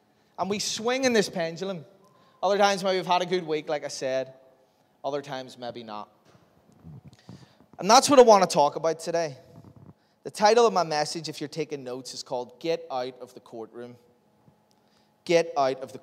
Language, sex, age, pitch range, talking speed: English, male, 20-39, 140-180 Hz, 185 wpm